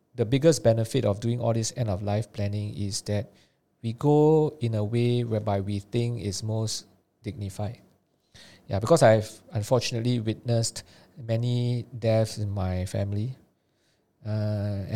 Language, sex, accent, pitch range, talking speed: English, male, Malaysian, 100-115 Hz, 130 wpm